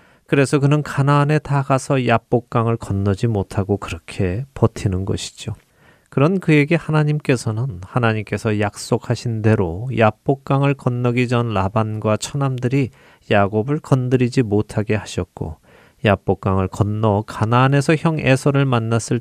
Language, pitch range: Korean, 100-135 Hz